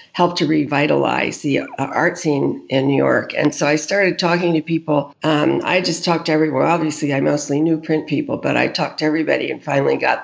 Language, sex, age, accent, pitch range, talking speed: English, female, 50-69, American, 145-170 Hz, 210 wpm